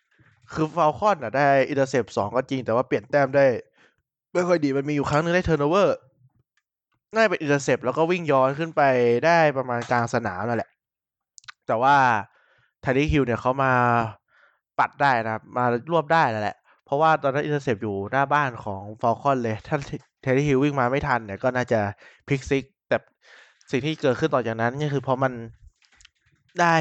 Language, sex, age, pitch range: Thai, male, 20-39, 115-150 Hz